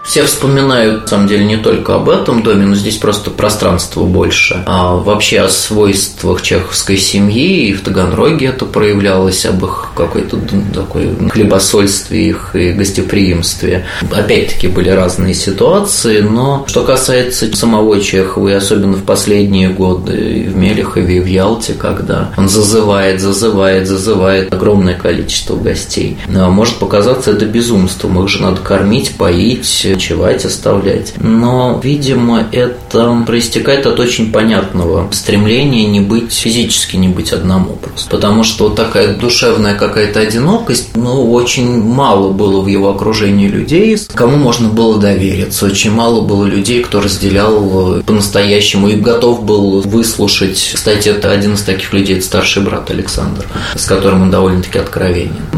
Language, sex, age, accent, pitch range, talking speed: Russian, male, 20-39, native, 95-110 Hz, 145 wpm